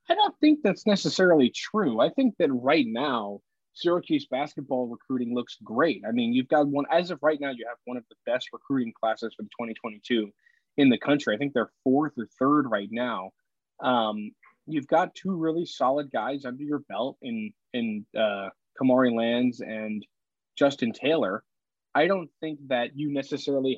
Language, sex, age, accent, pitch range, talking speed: English, male, 20-39, American, 125-160 Hz, 185 wpm